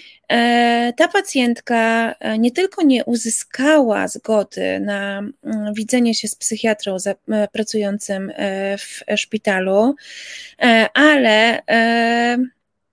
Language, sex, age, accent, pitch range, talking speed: Polish, female, 20-39, native, 215-255 Hz, 75 wpm